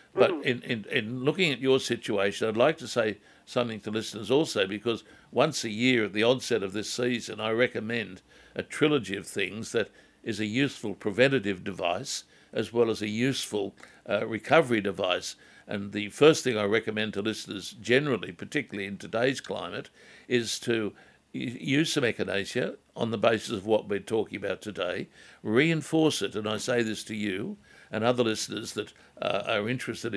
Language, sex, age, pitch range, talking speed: English, male, 60-79, 105-125 Hz, 175 wpm